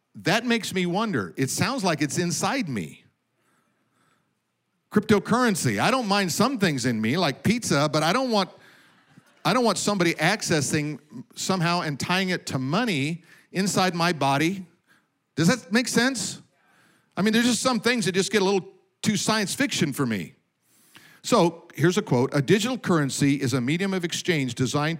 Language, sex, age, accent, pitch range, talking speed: English, male, 50-69, American, 140-195 Hz, 170 wpm